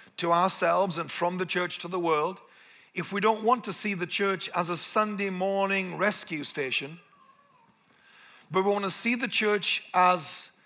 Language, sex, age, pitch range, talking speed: English, male, 50-69, 175-205 Hz, 175 wpm